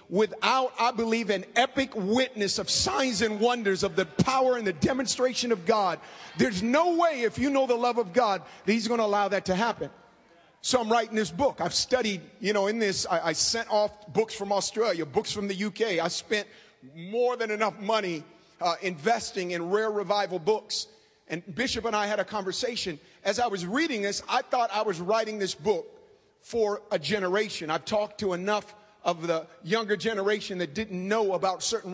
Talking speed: 195 wpm